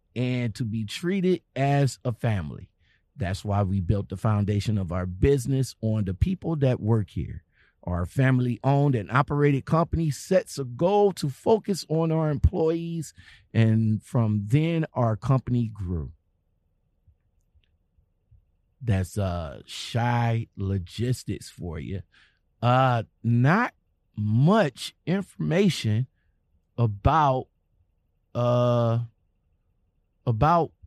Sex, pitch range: male, 95-140 Hz